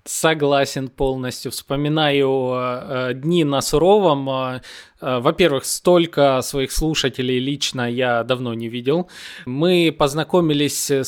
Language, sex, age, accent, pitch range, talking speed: Russian, male, 20-39, native, 130-170 Hz, 90 wpm